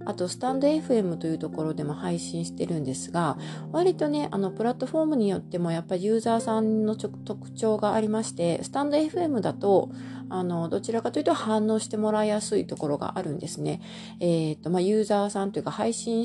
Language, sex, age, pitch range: Japanese, female, 30-49, 150-220 Hz